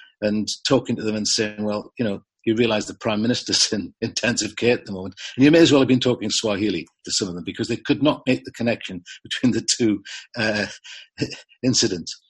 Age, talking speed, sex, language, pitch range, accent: 50-69, 220 wpm, male, English, 105-140 Hz, British